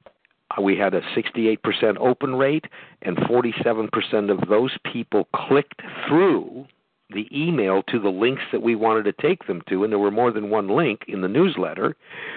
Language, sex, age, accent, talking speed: English, male, 50-69, American, 170 wpm